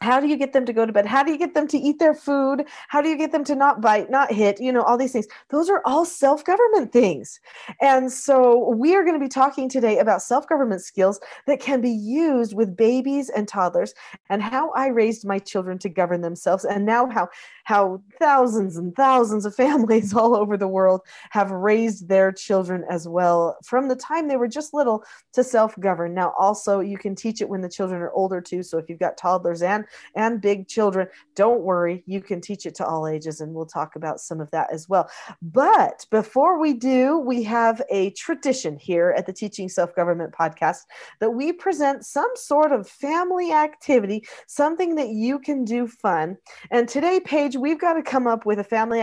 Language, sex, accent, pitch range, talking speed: English, female, American, 190-270 Hz, 210 wpm